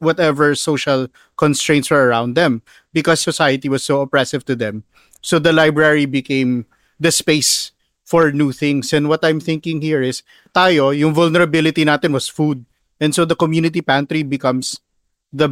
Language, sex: English, male